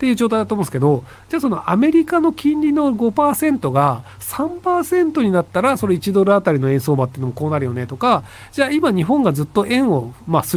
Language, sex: Japanese, male